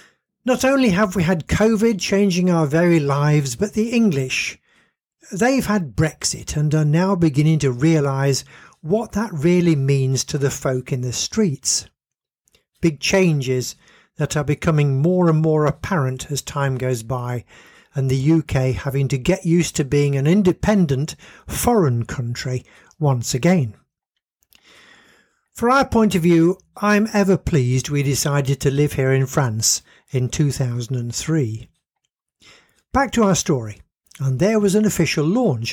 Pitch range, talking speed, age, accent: 135-190 Hz, 145 wpm, 50-69, British